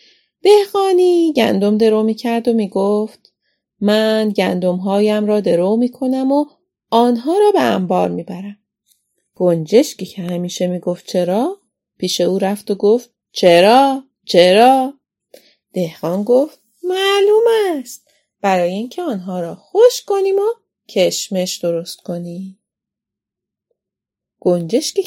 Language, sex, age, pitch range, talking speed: Persian, female, 30-49, 185-295 Hz, 115 wpm